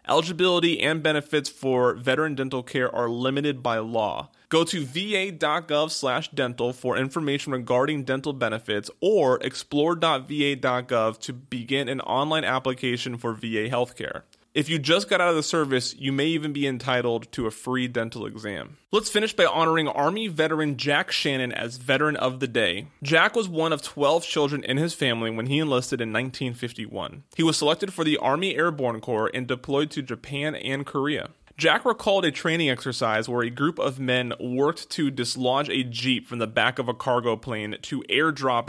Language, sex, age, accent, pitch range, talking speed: English, male, 30-49, American, 125-160 Hz, 175 wpm